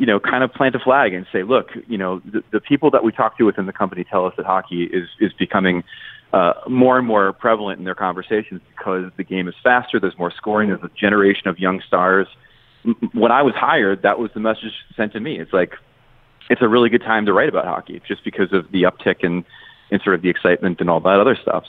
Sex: male